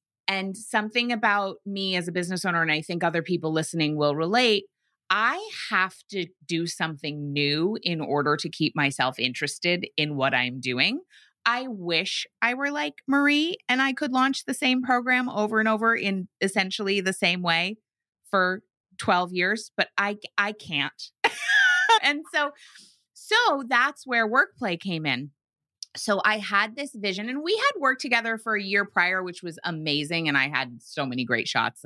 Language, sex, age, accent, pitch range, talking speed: English, female, 30-49, American, 155-220 Hz, 175 wpm